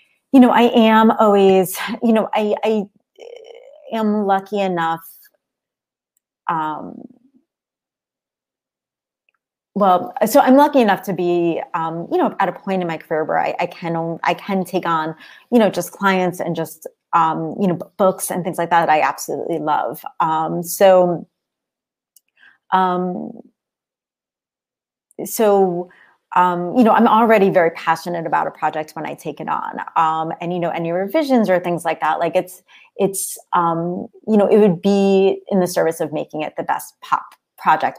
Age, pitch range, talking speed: 30-49, 170-210 Hz, 165 wpm